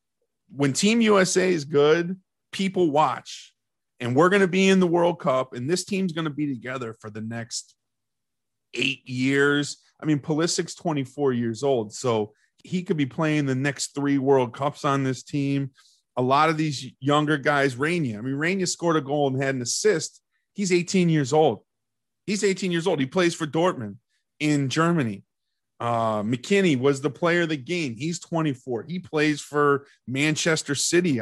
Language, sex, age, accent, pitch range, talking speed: English, male, 30-49, American, 125-165 Hz, 180 wpm